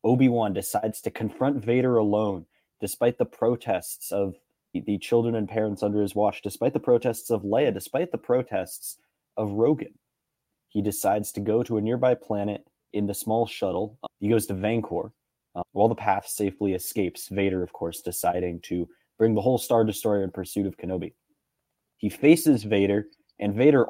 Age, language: 20-39, English